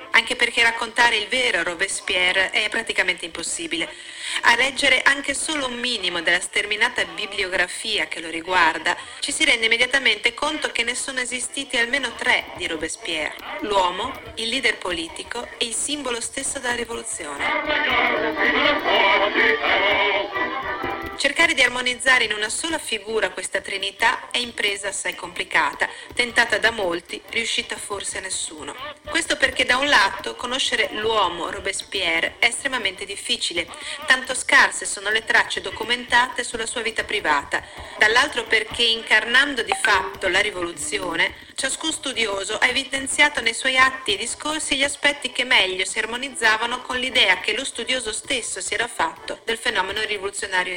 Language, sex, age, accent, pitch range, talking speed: Italian, female, 40-59, native, 220-275 Hz, 140 wpm